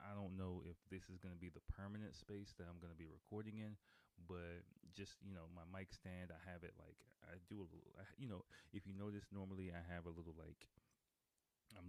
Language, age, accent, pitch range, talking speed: English, 30-49, American, 85-100 Hz, 220 wpm